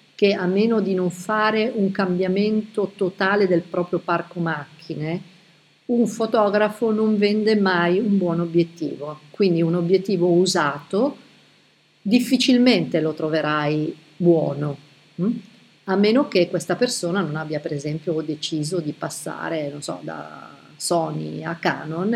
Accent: native